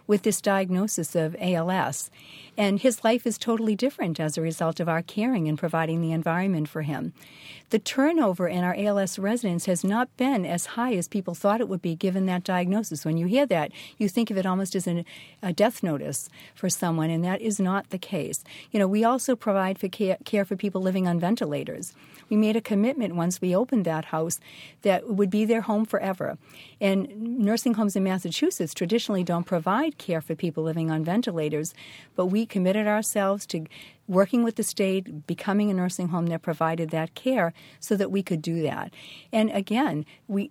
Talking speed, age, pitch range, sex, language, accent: 195 wpm, 50-69, 165-215 Hz, female, English, American